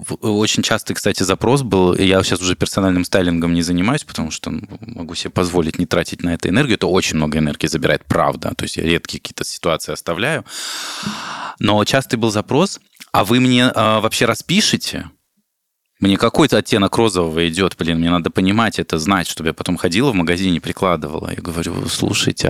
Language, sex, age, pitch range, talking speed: Russian, male, 20-39, 90-110 Hz, 175 wpm